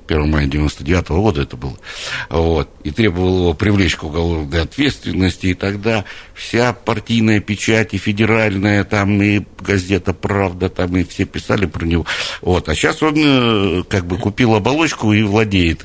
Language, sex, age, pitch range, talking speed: Russian, male, 60-79, 85-110 Hz, 150 wpm